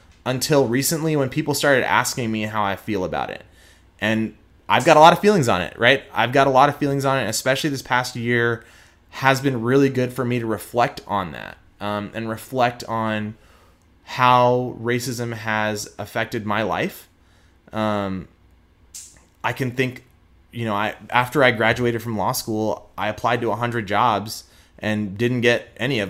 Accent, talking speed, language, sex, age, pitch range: American, 180 wpm, English, male, 20-39, 95-125 Hz